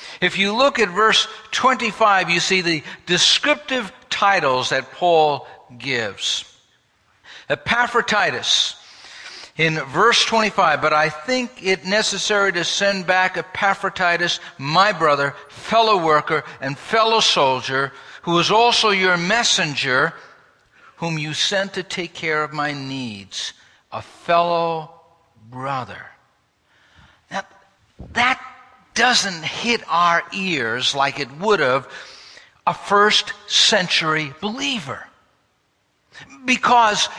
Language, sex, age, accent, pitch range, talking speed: English, male, 60-79, American, 160-230 Hz, 105 wpm